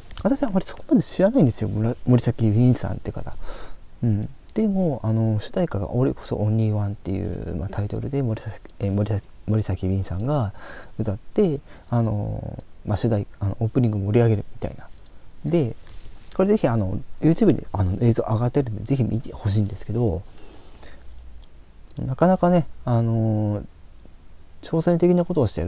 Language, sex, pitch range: Japanese, male, 95-125 Hz